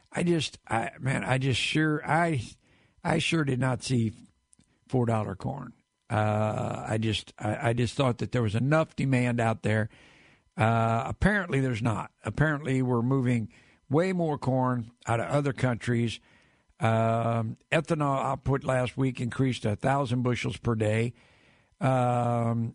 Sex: male